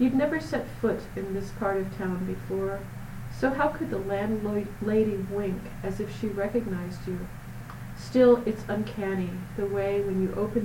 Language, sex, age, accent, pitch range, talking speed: English, female, 40-59, American, 190-230 Hz, 165 wpm